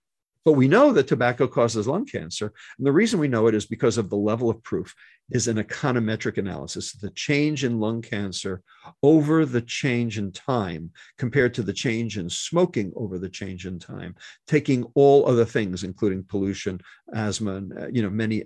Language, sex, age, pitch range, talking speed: English, male, 50-69, 100-125 Hz, 185 wpm